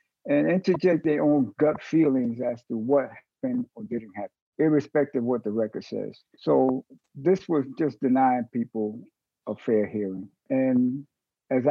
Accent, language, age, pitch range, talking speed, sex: American, English, 60-79, 120-185 Hz, 155 wpm, male